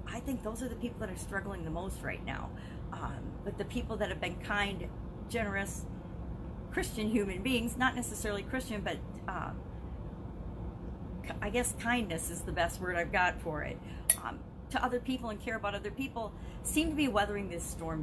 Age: 40-59